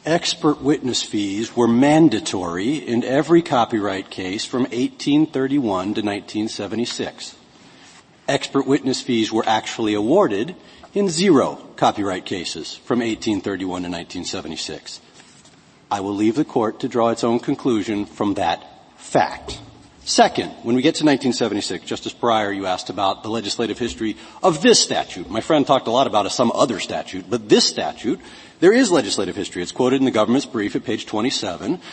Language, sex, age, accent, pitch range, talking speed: English, male, 40-59, American, 110-140 Hz, 155 wpm